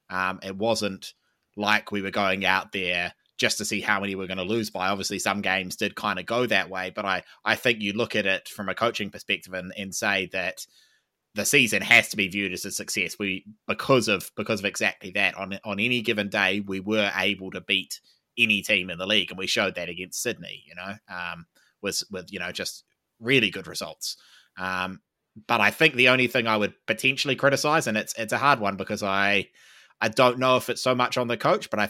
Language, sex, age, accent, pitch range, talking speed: English, male, 20-39, Australian, 95-115 Hz, 235 wpm